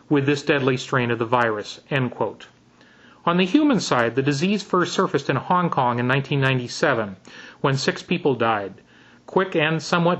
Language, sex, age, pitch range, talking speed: English, male, 40-59, 130-165 Hz, 160 wpm